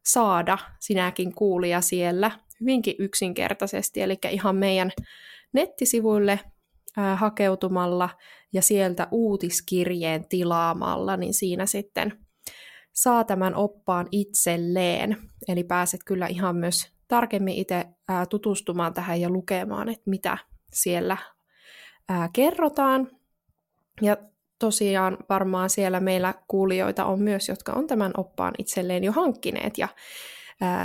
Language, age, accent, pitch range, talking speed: Finnish, 20-39, native, 180-215 Hz, 105 wpm